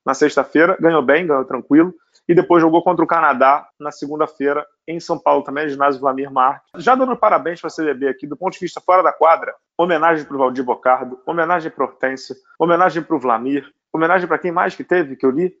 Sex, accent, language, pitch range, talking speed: male, Brazilian, Portuguese, 140-170 Hz, 225 wpm